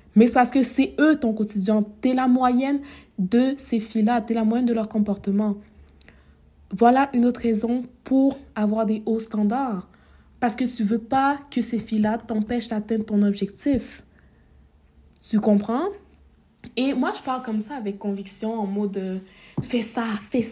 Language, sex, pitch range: French, female, 205-245 Hz